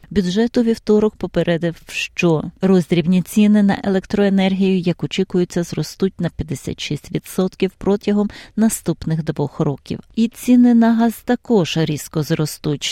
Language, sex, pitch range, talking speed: Ukrainian, female, 160-215 Hz, 110 wpm